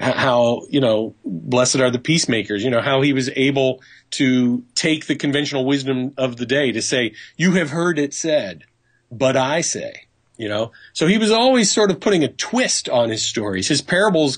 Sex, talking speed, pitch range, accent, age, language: male, 195 wpm, 120-170 Hz, American, 30-49, English